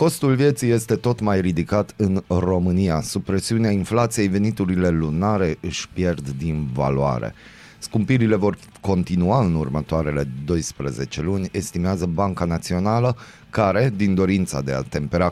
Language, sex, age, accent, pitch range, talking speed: Romanian, male, 30-49, native, 80-110 Hz, 130 wpm